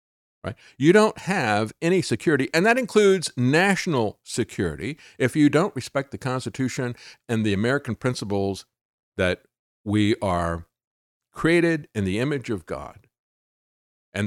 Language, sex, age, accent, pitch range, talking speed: English, male, 50-69, American, 105-150 Hz, 130 wpm